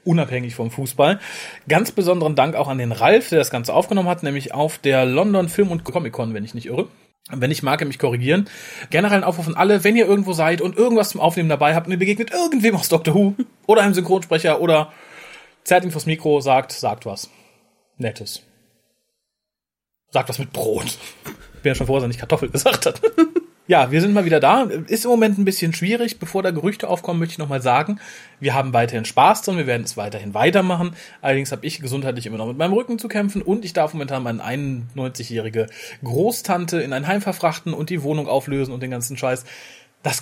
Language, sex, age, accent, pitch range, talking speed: German, male, 30-49, German, 135-195 Hz, 210 wpm